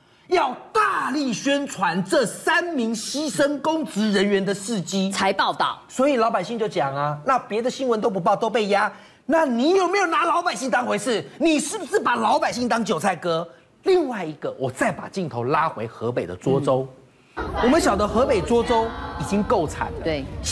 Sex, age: male, 30-49